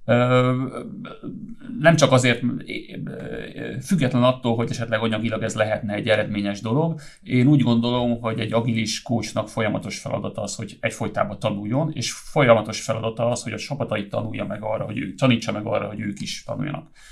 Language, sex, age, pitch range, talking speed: Hungarian, male, 30-49, 110-130 Hz, 160 wpm